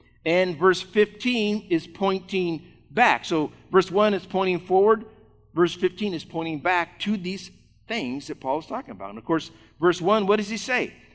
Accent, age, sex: American, 50-69, male